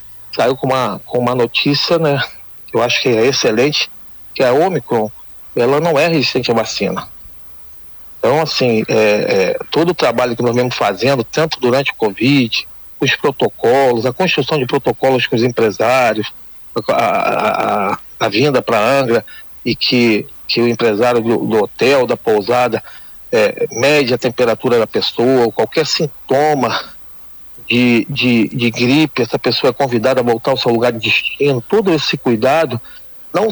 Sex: male